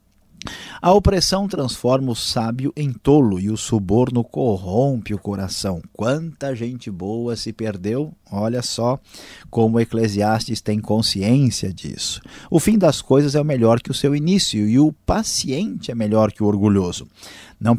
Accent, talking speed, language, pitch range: Brazilian, 150 wpm, Portuguese, 100-135 Hz